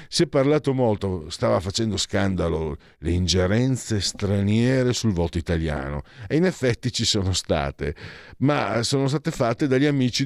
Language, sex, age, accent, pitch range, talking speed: Italian, male, 50-69, native, 95-125 Hz, 145 wpm